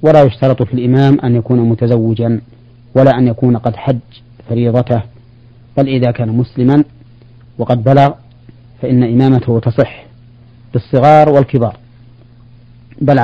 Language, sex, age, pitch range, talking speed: Arabic, male, 40-59, 120-130 Hz, 115 wpm